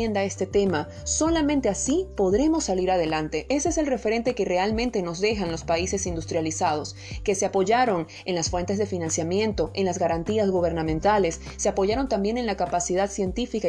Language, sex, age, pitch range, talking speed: Spanish, female, 30-49, 170-215 Hz, 165 wpm